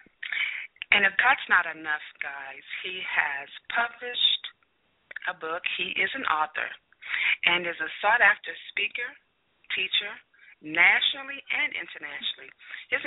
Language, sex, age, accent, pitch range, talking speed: English, female, 30-49, American, 165-195 Hz, 115 wpm